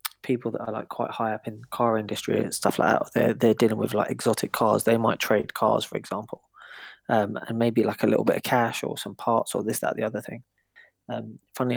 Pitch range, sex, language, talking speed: 110-125 Hz, male, English, 245 wpm